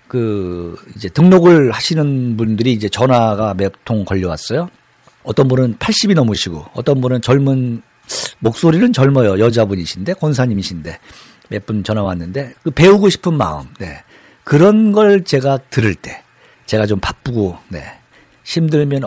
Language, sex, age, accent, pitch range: Korean, male, 50-69, native, 105-150 Hz